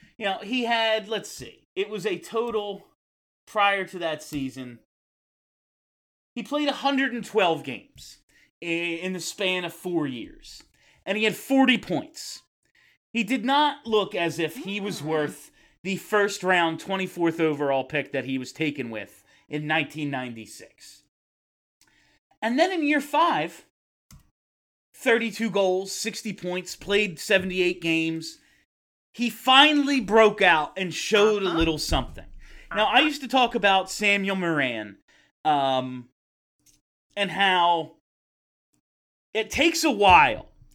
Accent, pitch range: American, 155-220 Hz